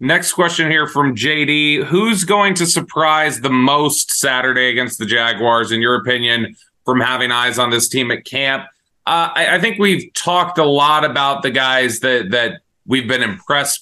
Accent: American